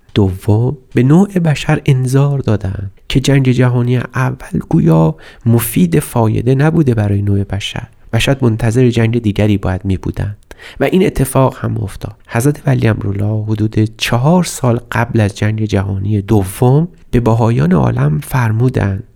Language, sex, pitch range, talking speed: Persian, male, 105-135 Hz, 145 wpm